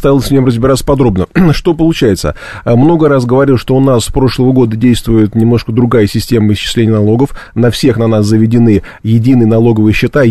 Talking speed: 175 wpm